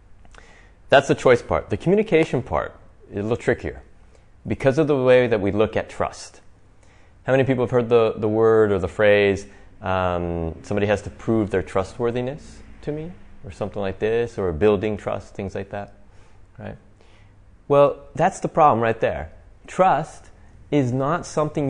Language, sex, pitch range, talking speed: English, male, 95-125 Hz, 170 wpm